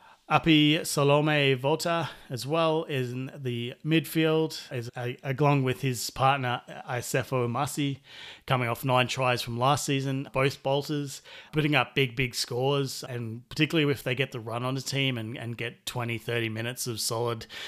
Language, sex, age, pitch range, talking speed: English, male, 30-49, 120-145 Hz, 165 wpm